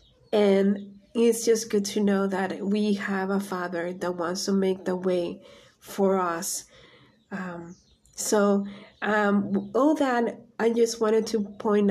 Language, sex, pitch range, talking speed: English, female, 190-215 Hz, 145 wpm